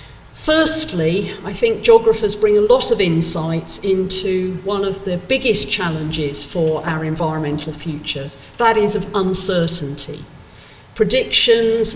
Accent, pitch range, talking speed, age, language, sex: British, 155-210 Hz, 120 wpm, 40-59, English, female